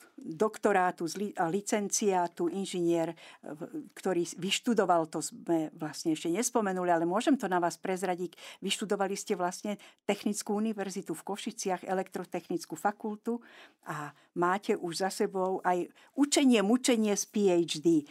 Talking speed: 120 wpm